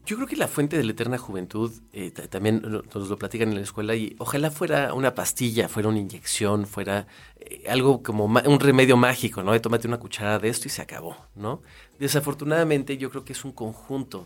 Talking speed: 210 wpm